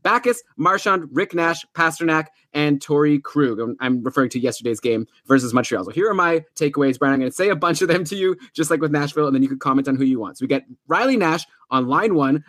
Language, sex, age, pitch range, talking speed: English, male, 20-39, 130-155 Hz, 250 wpm